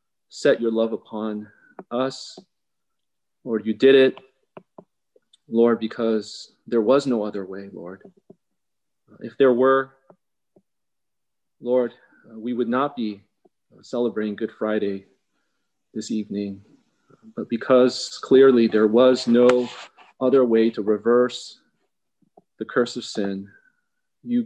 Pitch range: 110-130 Hz